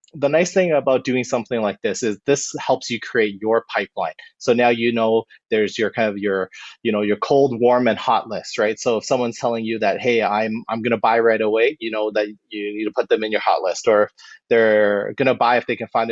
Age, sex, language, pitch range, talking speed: 30-49, male, English, 105-130 Hz, 255 wpm